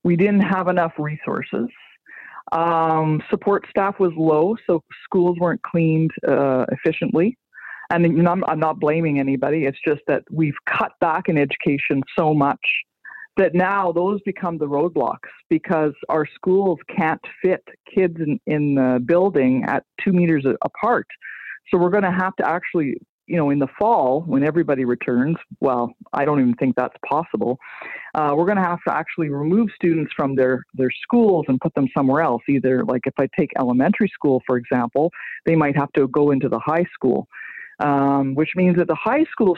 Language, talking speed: English, 175 wpm